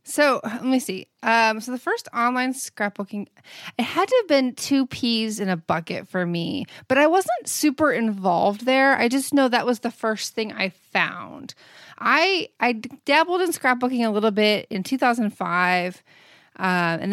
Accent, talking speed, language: American, 175 wpm, English